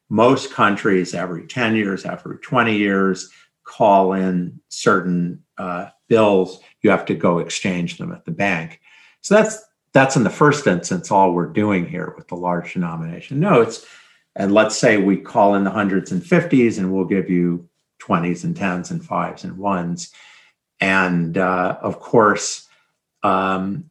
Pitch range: 90-115 Hz